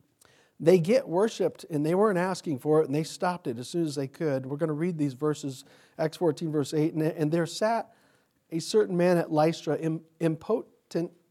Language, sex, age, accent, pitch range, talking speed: English, male, 40-59, American, 145-190 Hz, 195 wpm